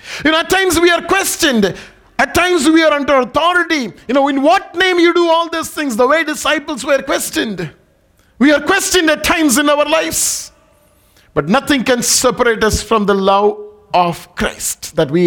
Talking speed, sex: 190 wpm, male